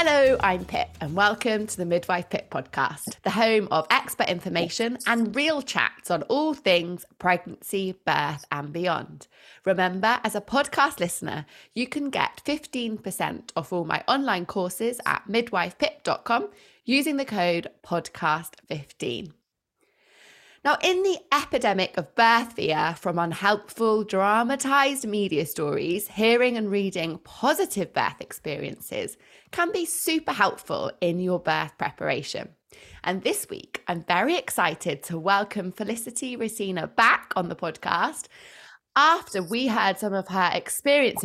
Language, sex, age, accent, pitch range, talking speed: English, female, 20-39, British, 180-265 Hz, 135 wpm